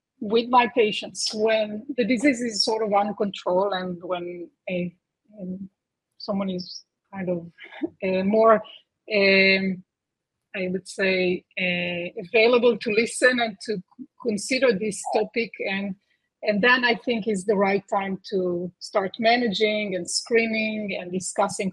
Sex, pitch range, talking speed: female, 190-225 Hz, 135 wpm